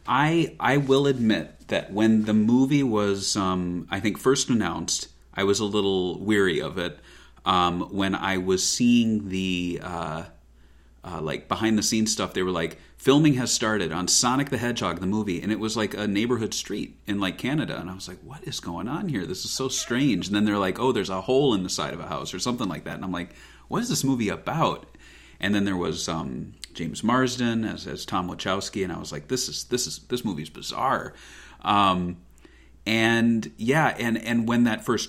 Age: 30-49